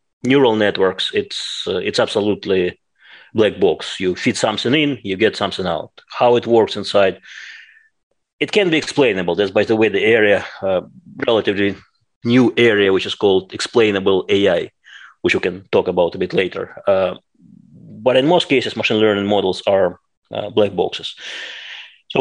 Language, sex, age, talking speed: English, male, 30-49, 160 wpm